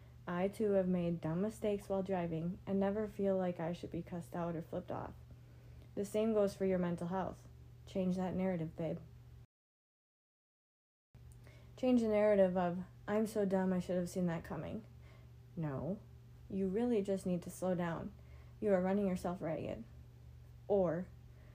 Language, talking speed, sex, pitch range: English, 160 wpm, female, 120-195 Hz